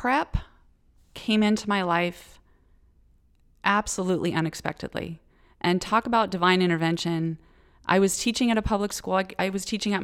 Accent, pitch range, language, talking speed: American, 160-190 Hz, English, 135 wpm